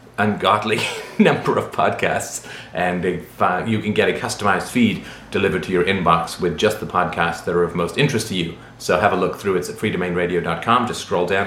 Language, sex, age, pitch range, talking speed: English, male, 30-49, 100-130 Hz, 200 wpm